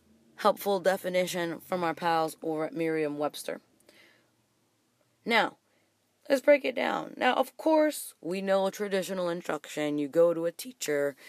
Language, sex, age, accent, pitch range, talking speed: English, female, 20-39, American, 160-220 Hz, 140 wpm